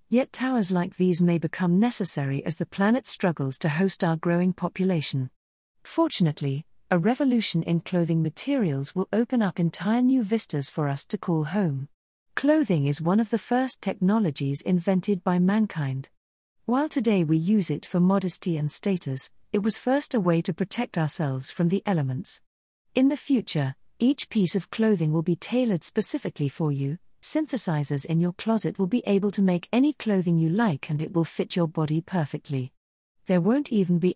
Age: 40-59